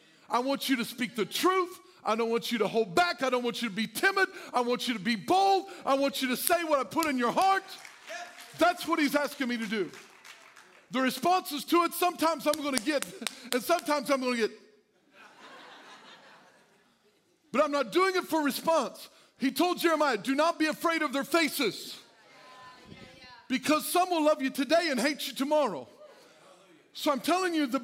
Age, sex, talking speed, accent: 50-69, male, 200 wpm, American